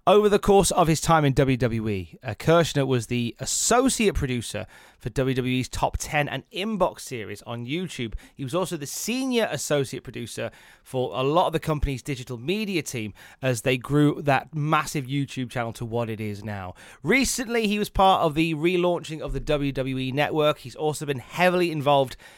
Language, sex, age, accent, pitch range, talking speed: English, male, 30-49, British, 120-160 Hz, 180 wpm